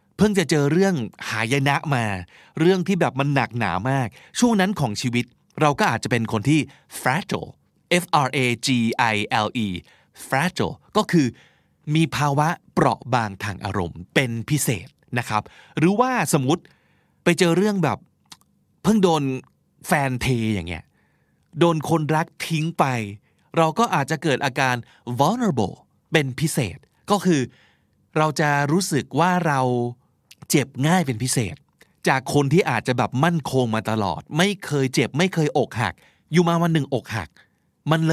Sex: male